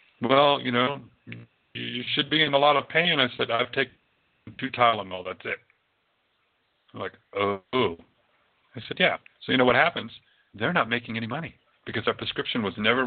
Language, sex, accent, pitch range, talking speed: English, male, American, 100-130 Hz, 185 wpm